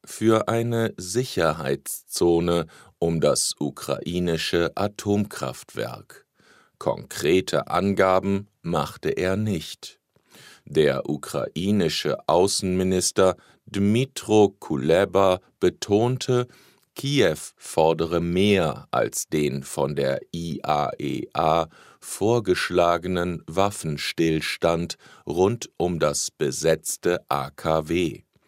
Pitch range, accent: 80-100 Hz, German